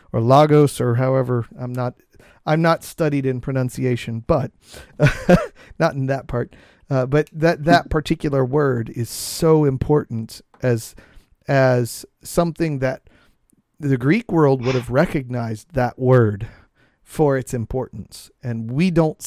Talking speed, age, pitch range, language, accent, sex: 135 wpm, 40-59, 120-150 Hz, English, American, male